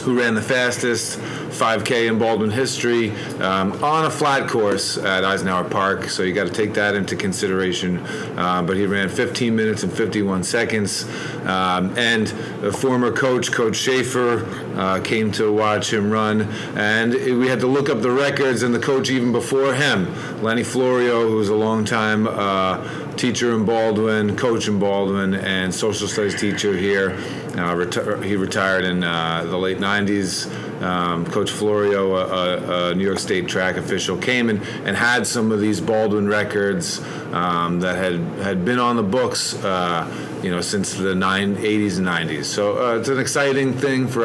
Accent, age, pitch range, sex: American, 40-59, 95-115 Hz, male